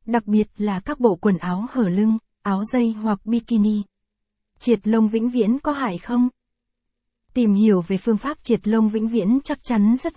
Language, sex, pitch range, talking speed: Vietnamese, female, 205-235 Hz, 190 wpm